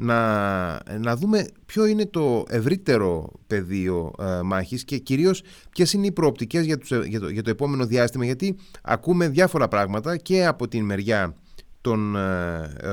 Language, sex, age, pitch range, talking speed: Greek, male, 30-49, 105-150 Hz, 160 wpm